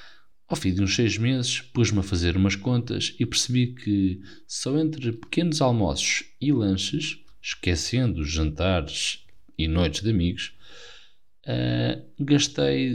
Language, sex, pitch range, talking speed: Portuguese, male, 85-110 Hz, 130 wpm